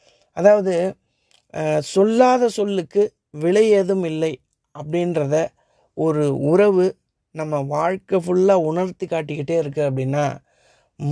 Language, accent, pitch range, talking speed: Tamil, native, 150-195 Hz, 85 wpm